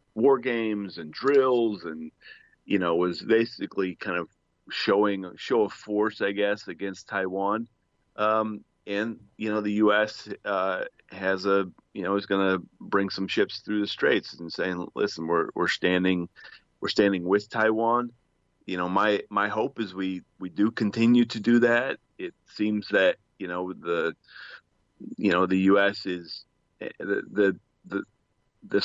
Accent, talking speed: American, 160 wpm